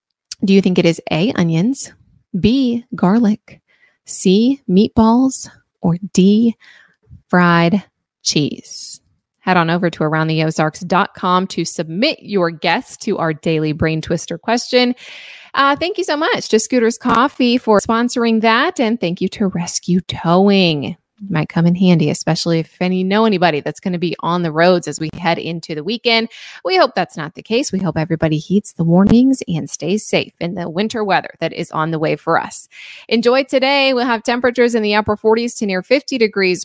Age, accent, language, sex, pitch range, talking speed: 20-39, American, English, female, 170-235 Hz, 175 wpm